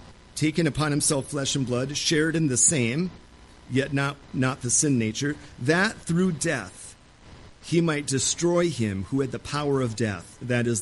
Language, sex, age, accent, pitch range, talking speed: English, male, 40-59, American, 110-155 Hz, 170 wpm